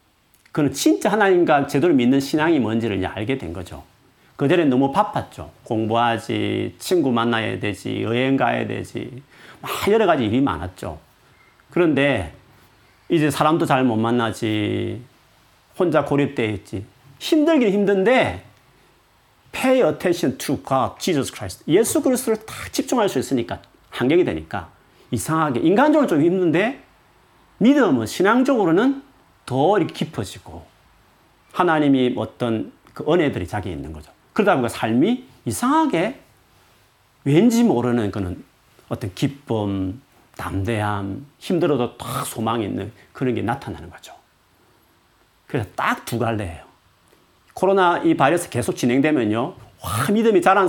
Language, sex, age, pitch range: Korean, male, 40-59, 105-160 Hz